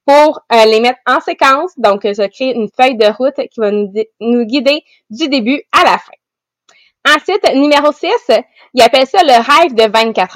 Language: English